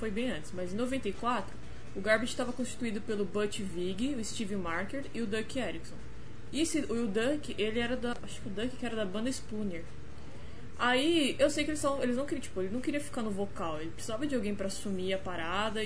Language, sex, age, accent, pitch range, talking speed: Portuguese, female, 20-39, Brazilian, 210-285 Hz, 240 wpm